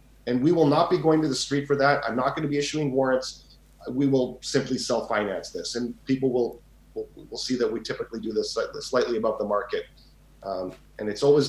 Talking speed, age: 215 wpm, 40-59